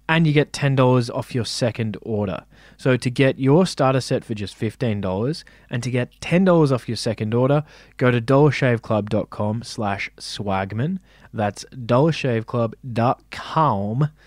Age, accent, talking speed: 20-39, Australian, 145 wpm